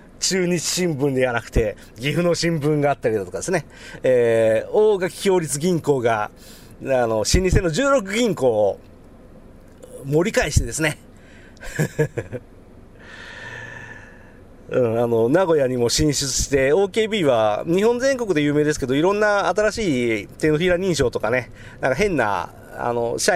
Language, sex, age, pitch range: Japanese, male, 40-59, 120-200 Hz